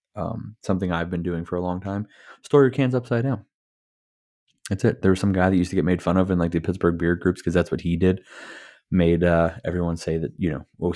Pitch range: 85-110 Hz